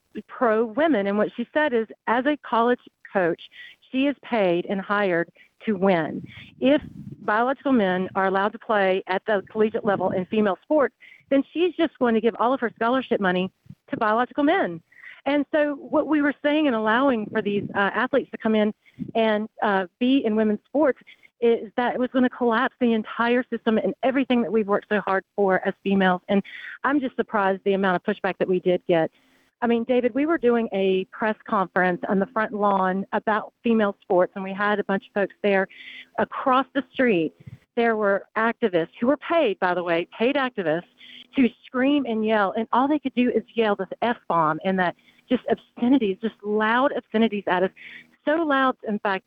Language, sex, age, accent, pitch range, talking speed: English, female, 40-59, American, 195-250 Hz, 200 wpm